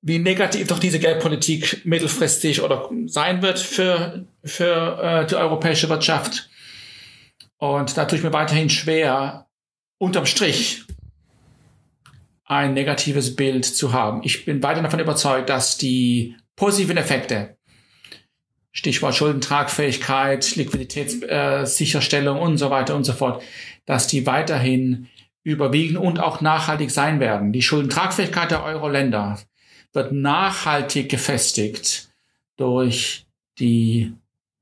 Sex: male